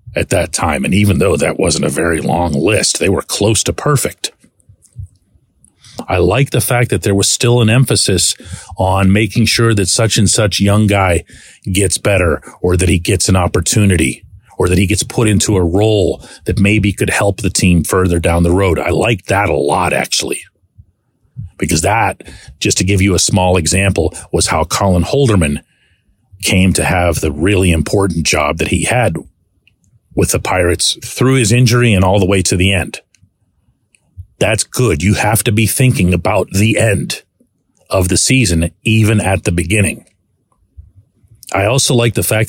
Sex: male